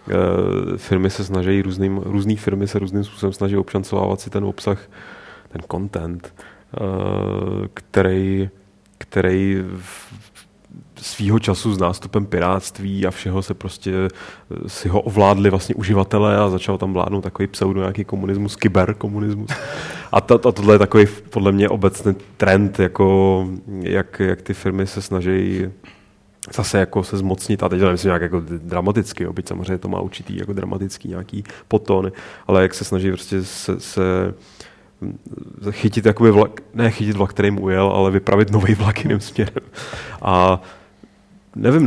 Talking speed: 145 wpm